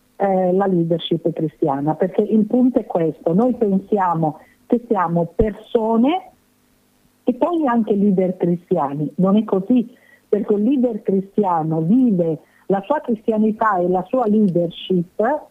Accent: native